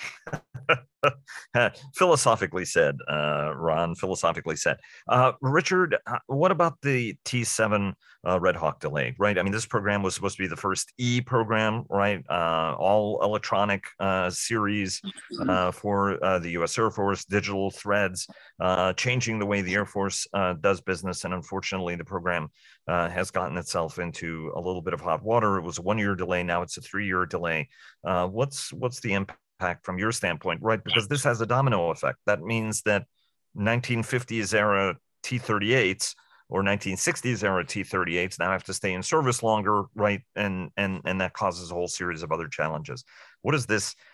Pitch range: 95-115 Hz